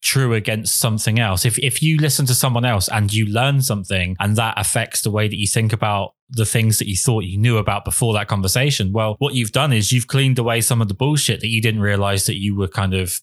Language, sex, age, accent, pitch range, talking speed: English, male, 20-39, British, 100-120 Hz, 255 wpm